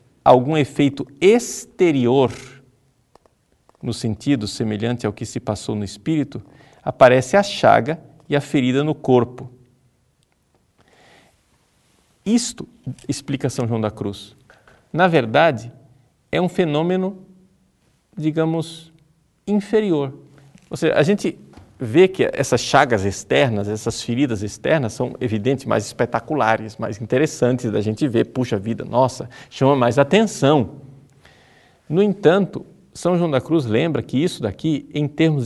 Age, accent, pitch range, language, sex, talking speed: 50-69, Brazilian, 115-160 Hz, Portuguese, male, 125 wpm